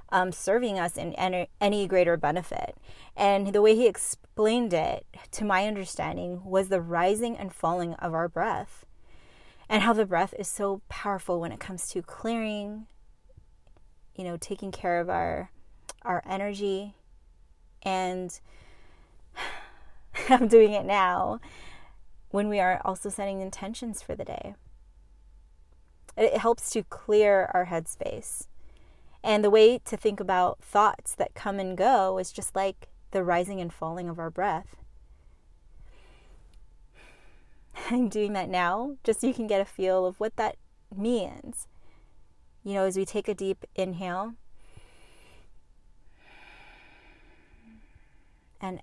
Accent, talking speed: American, 135 wpm